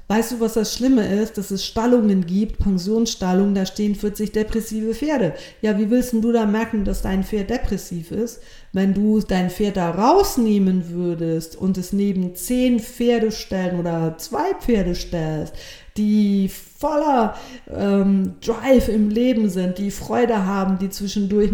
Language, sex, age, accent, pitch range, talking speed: German, female, 50-69, German, 180-215 Hz, 160 wpm